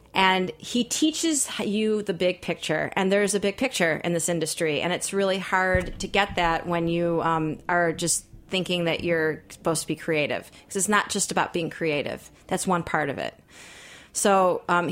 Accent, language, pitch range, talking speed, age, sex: American, English, 170-195 Hz, 195 wpm, 30-49, female